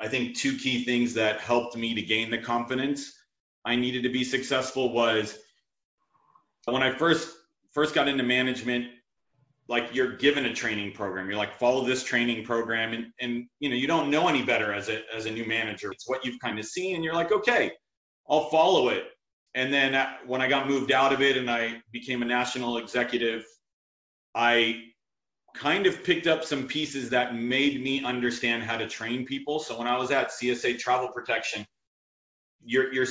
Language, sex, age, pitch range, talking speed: English, male, 30-49, 115-135 Hz, 190 wpm